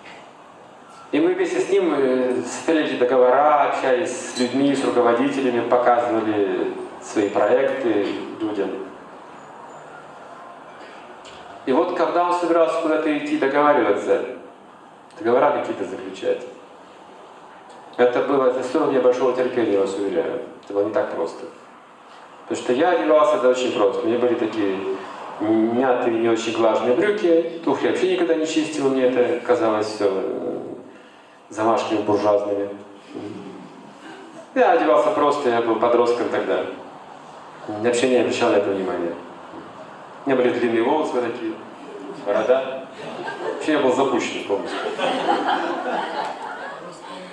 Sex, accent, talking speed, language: male, native, 120 wpm, Russian